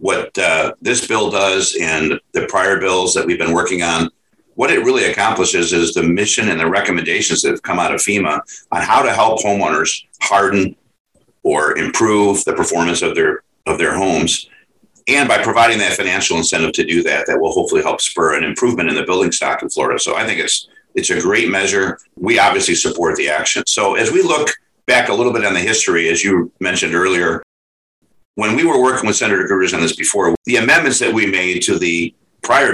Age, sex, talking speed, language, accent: 50-69, male, 205 wpm, English, American